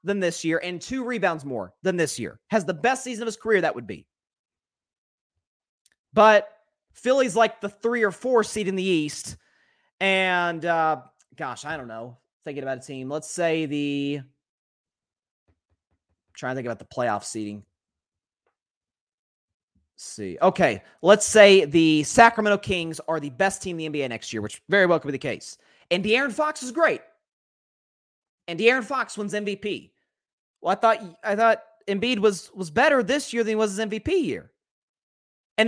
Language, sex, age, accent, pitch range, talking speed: English, male, 30-49, American, 155-230 Hz, 170 wpm